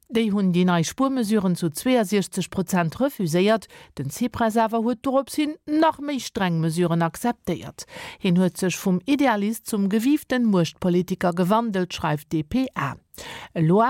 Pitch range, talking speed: 175-245 Hz, 115 wpm